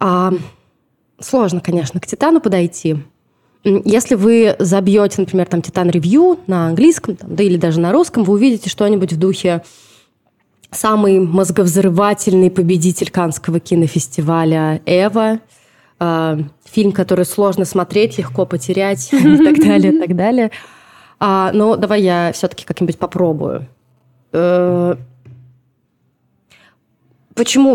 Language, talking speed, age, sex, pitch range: Russian, 110 wpm, 20-39, female, 175-220 Hz